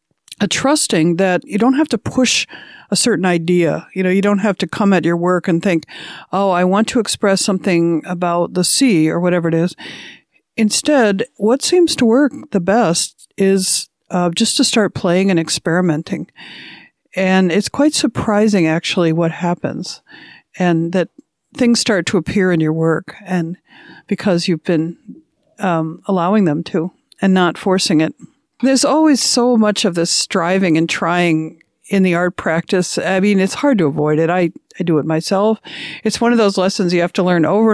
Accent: American